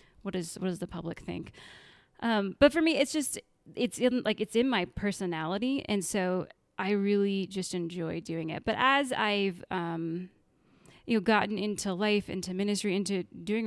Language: English